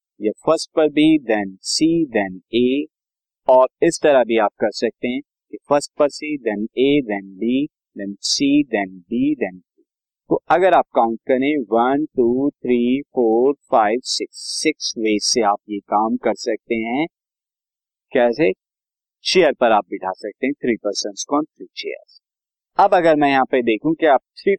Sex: male